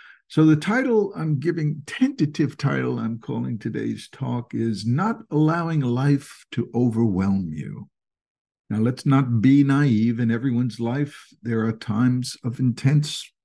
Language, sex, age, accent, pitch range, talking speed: English, male, 60-79, American, 115-150 Hz, 140 wpm